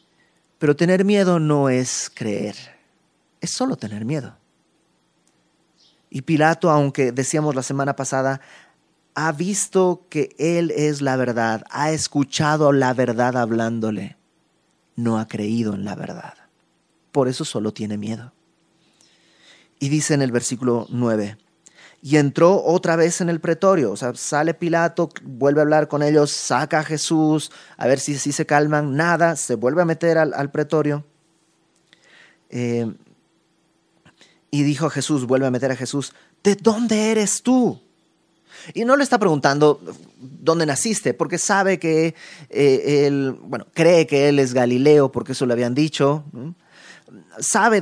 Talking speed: 145 wpm